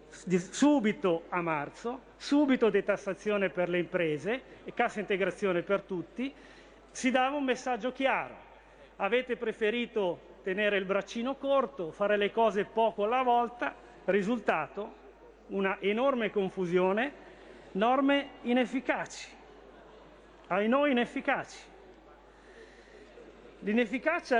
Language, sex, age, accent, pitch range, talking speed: Italian, male, 40-59, native, 205-260 Hz, 100 wpm